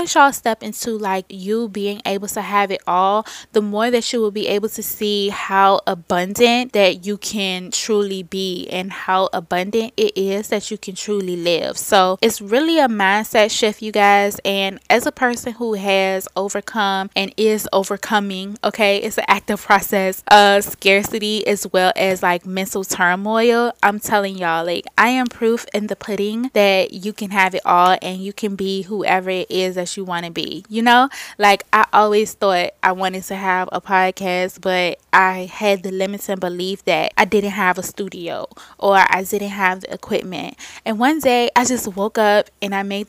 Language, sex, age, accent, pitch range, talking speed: English, female, 20-39, American, 190-220 Hz, 190 wpm